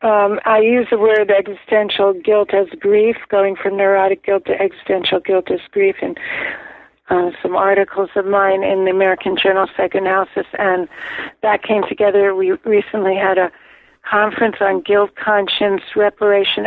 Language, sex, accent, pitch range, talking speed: English, female, American, 195-220 Hz, 150 wpm